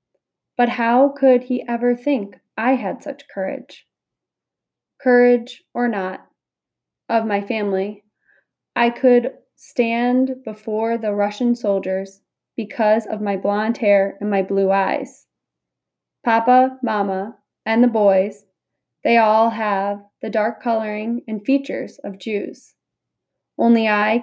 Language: English